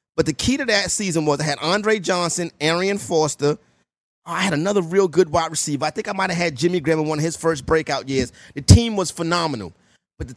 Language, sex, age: English, male, 30-49